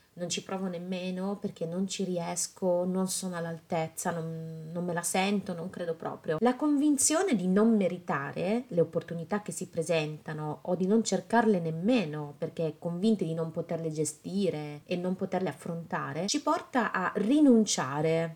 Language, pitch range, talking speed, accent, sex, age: Italian, 165-215 Hz, 155 wpm, native, female, 30-49